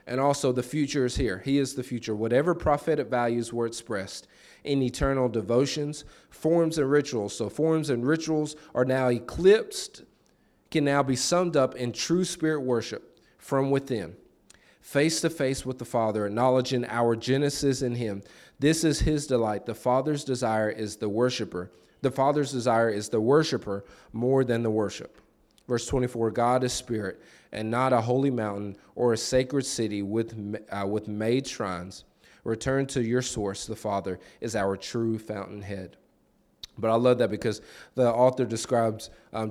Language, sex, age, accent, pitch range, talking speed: English, male, 40-59, American, 110-140 Hz, 165 wpm